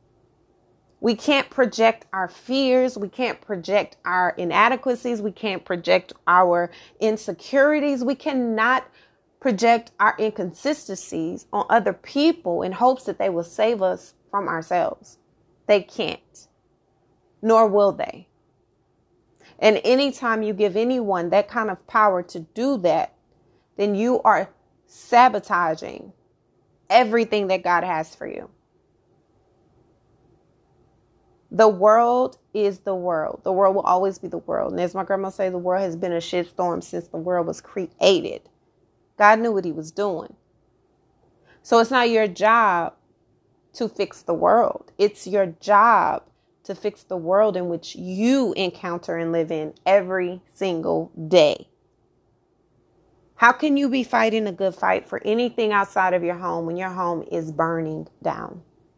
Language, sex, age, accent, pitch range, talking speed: English, female, 30-49, American, 180-230 Hz, 145 wpm